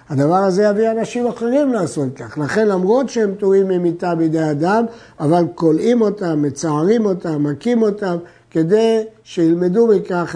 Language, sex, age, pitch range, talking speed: Hebrew, male, 60-79, 160-220 Hz, 140 wpm